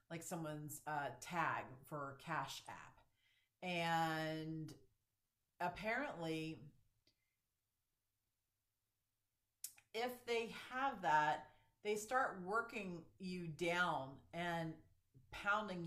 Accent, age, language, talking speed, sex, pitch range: American, 40-59, English, 75 wpm, female, 150-195 Hz